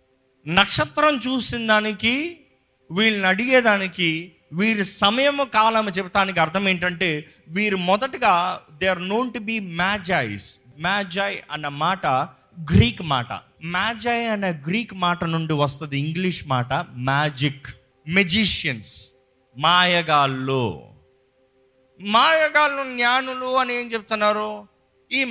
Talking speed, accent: 95 wpm, native